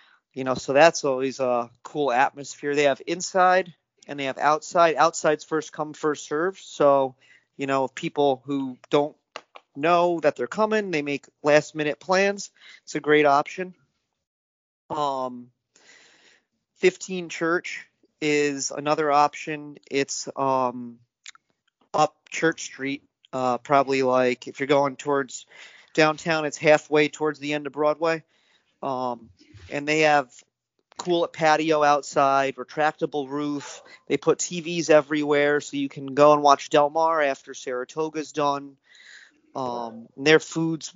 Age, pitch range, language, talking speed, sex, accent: 40-59, 135-155 Hz, English, 135 wpm, male, American